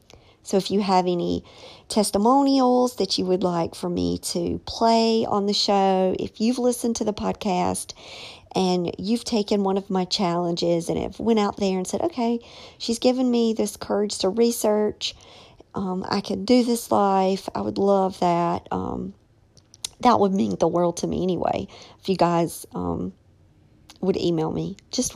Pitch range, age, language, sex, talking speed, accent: 175-225 Hz, 50-69, English, male, 170 wpm, American